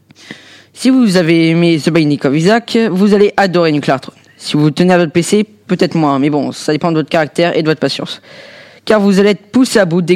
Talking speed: 235 wpm